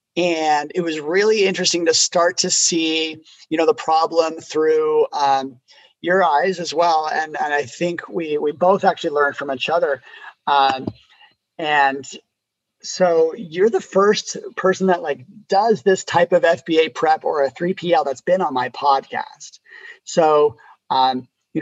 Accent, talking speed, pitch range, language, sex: American, 160 wpm, 140-215 Hz, English, male